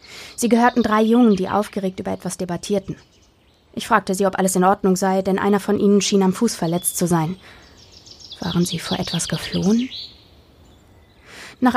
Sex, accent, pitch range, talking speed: female, German, 180-215 Hz, 170 wpm